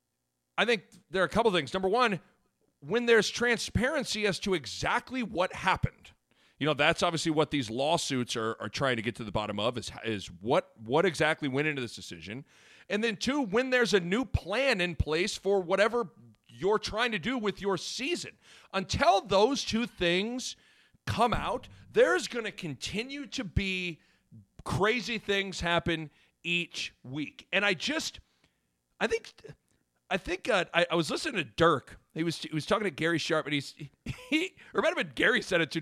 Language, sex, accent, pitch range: English, male, American, 160-235 Hz